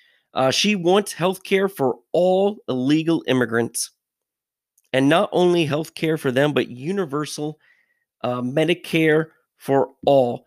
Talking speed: 125 wpm